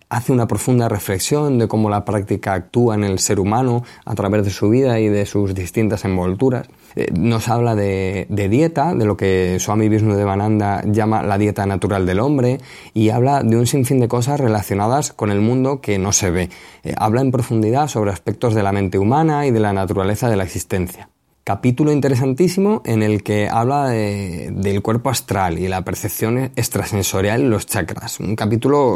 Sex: male